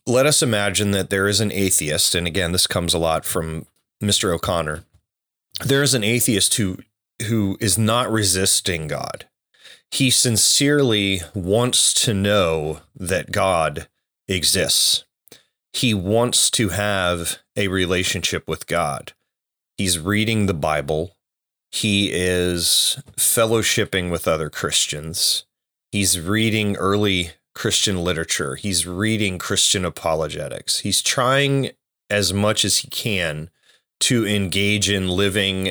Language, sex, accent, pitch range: English, male, American, 90-110 Hz